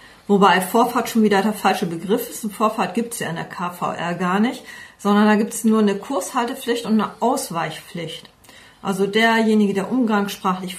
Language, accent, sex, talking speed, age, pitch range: German, German, female, 180 wpm, 40-59, 190-235 Hz